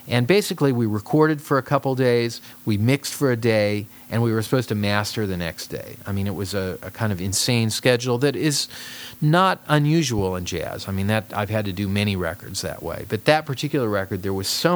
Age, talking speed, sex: 40-59, 230 wpm, male